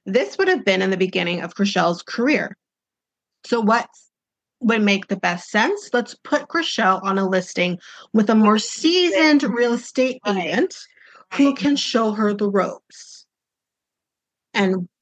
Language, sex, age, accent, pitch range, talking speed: English, female, 30-49, American, 195-255 Hz, 150 wpm